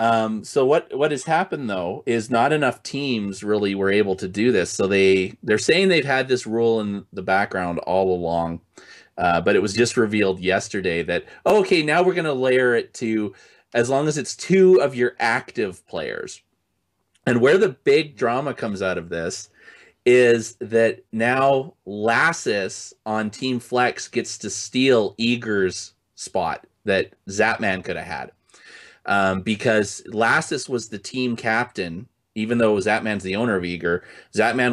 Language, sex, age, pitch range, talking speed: English, male, 30-49, 95-120 Hz, 170 wpm